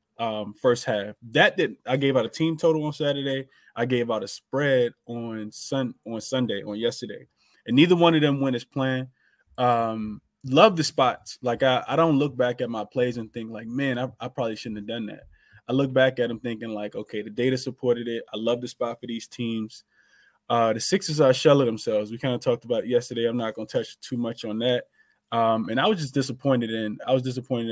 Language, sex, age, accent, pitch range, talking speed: English, male, 20-39, American, 110-130 Hz, 225 wpm